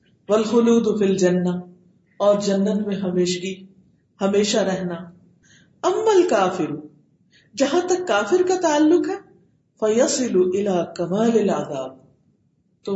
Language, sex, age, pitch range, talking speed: Urdu, female, 40-59, 175-220 Hz, 105 wpm